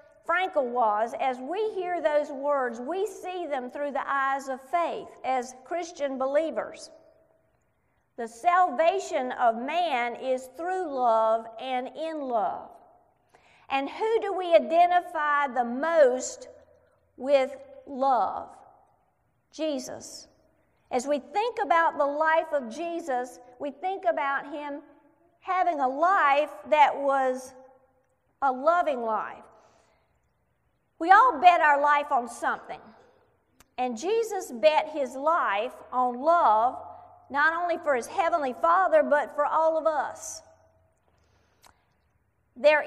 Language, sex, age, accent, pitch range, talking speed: English, female, 50-69, American, 255-335 Hz, 120 wpm